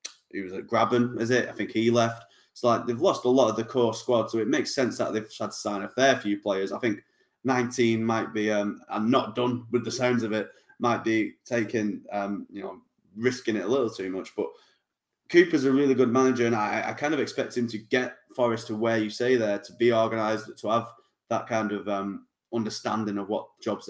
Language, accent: English, British